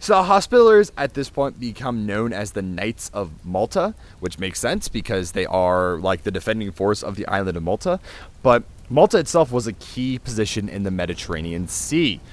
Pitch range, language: 95-130 Hz, English